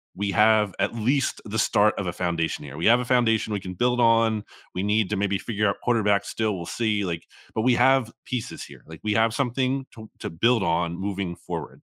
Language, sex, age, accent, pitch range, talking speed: English, male, 30-49, American, 90-115 Hz, 225 wpm